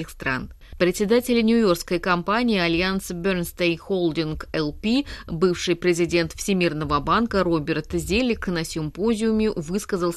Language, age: Russian, 30-49